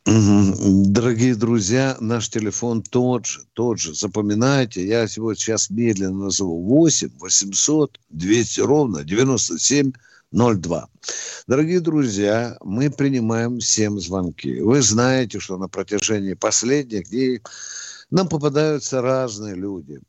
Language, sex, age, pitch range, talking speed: Russian, male, 60-79, 105-140 Hz, 115 wpm